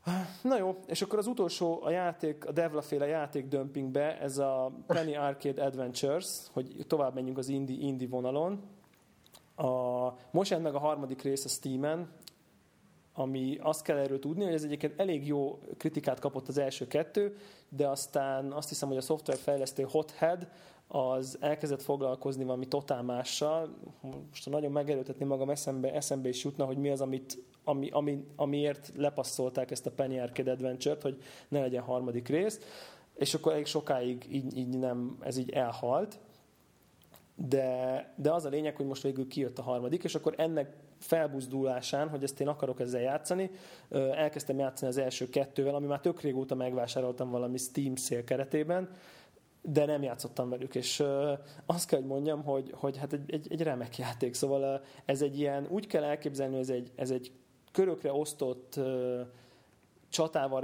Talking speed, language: 160 wpm, Hungarian